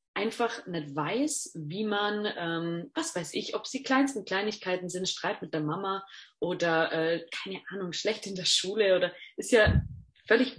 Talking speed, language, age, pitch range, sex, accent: 170 wpm, German, 20-39, 170-220 Hz, female, German